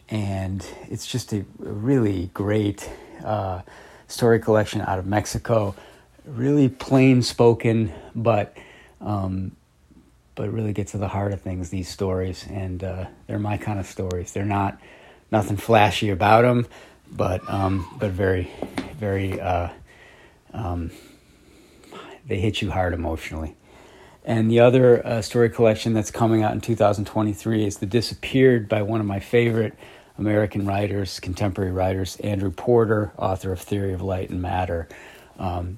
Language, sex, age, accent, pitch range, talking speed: English, male, 40-59, American, 95-110 Hz, 150 wpm